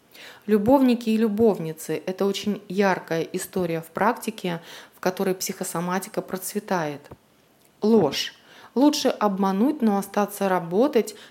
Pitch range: 185-230 Hz